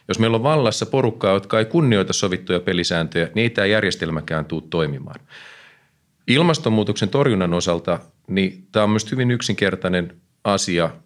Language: Finnish